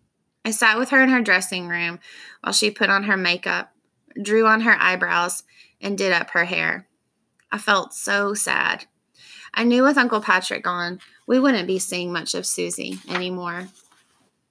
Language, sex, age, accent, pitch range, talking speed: English, female, 20-39, American, 185-225 Hz, 170 wpm